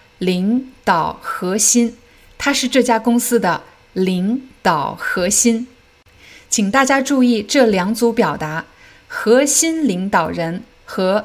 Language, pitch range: Chinese, 185-250 Hz